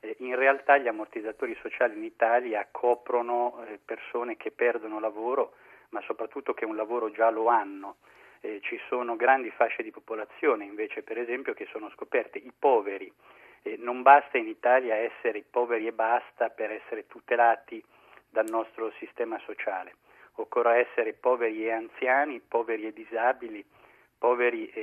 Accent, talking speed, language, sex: native, 140 wpm, Italian, male